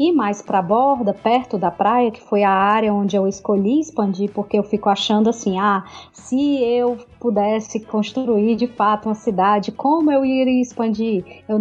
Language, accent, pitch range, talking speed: Portuguese, Brazilian, 205-265 Hz, 180 wpm